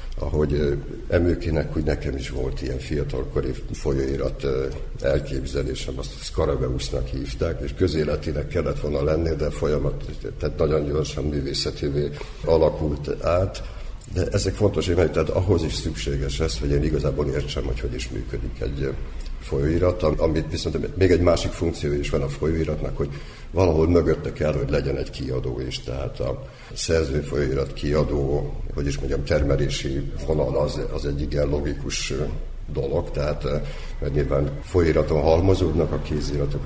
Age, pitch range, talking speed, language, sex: 60-79, 70-80 Hz, 140 wpm, Hungarian, male